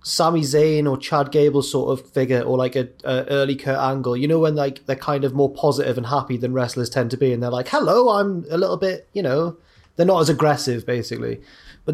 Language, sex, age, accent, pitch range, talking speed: English, male, 20-39, British, 130-165 Hz, 235 wpm